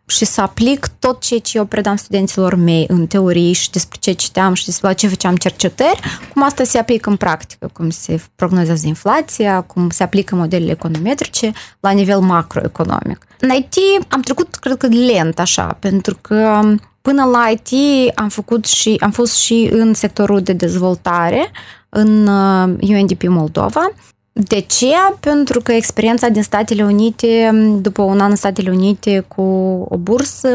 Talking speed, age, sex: 160 wpm, 20-39, female